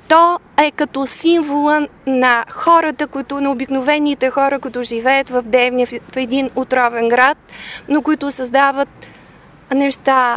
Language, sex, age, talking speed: Bulgarian, female, 20-39, 125 wpm